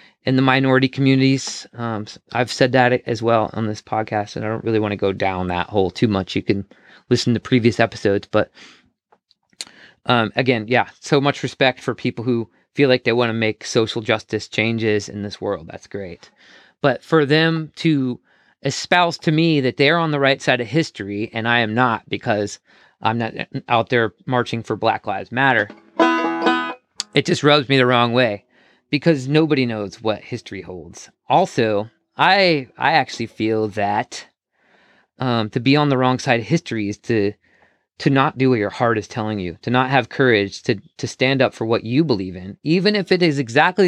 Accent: American